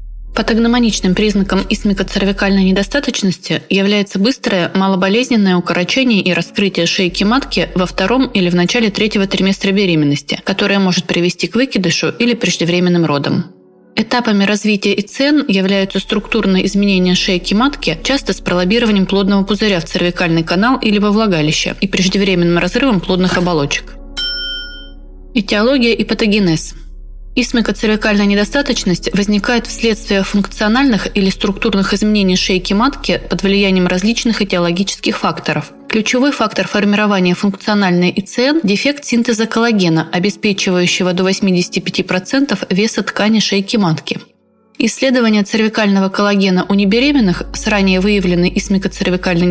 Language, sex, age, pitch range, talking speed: Russian, female, 20-39, 185-225 Hz, 115 wpm